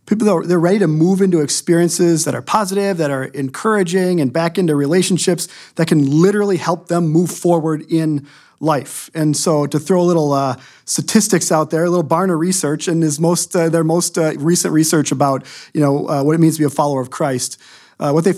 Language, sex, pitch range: English, male, 150-190 Hz